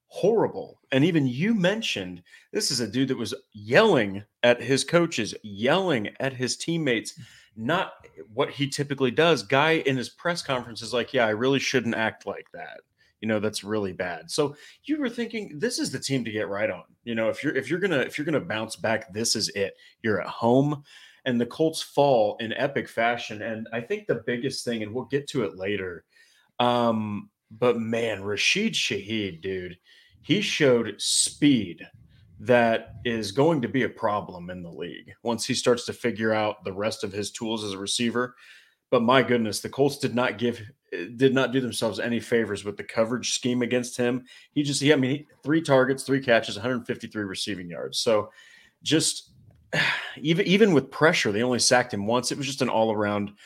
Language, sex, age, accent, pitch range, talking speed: English, male, 30-49, American, 110-135 Hz, 200 wpm